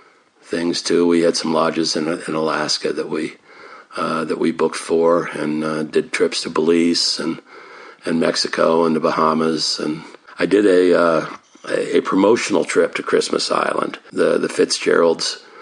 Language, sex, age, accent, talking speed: English, male, 60-79, American, 165 wpm